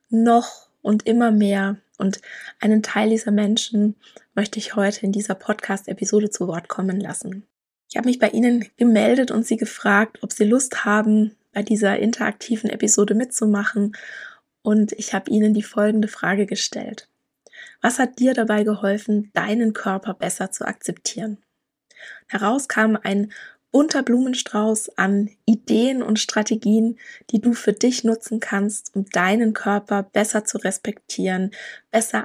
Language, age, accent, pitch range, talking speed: German, 20-39, German, 200-225 Hz, 145 wpm